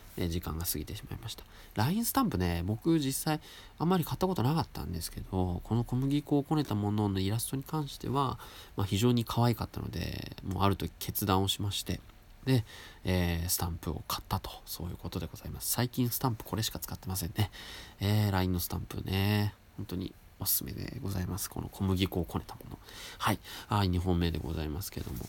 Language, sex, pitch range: Japanese, male, 90-120 Hz